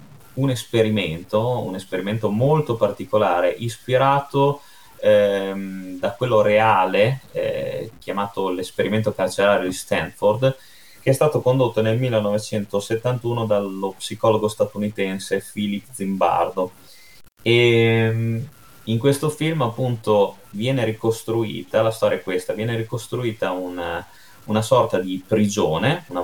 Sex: male